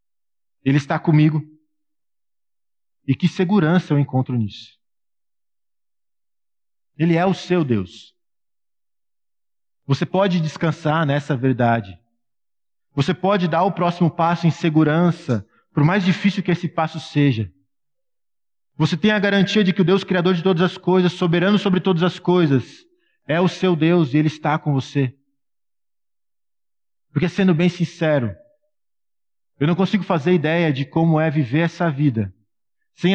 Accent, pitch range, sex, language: Brazilian, 120-175 Hz, male, Portuguese